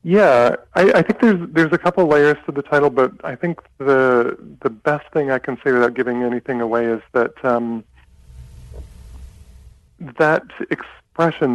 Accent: American